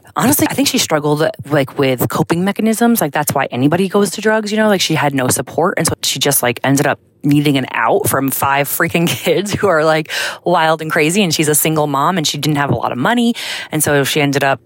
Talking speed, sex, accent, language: 250 wpm, female, American, English